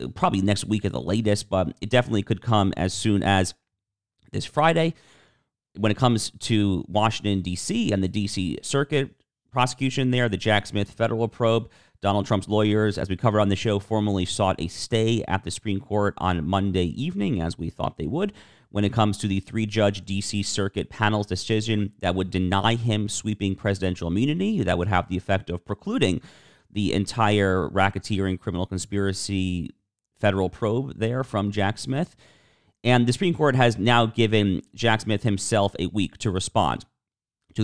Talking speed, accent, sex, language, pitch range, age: 170 wpm, American, male, English, 95-110 Hz, 40-59